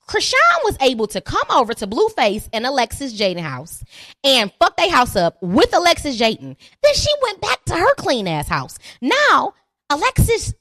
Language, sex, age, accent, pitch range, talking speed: English, female, 20-39, American, 215-350 Hz, 175 wpm